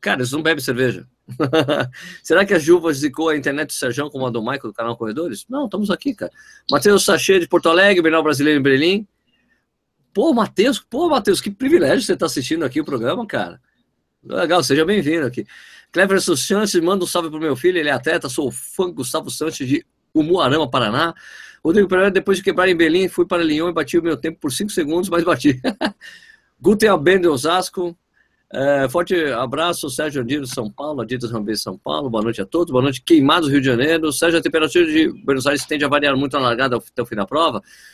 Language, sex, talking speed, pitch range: Portuguese, male, 210 wpm, 135-180 Hz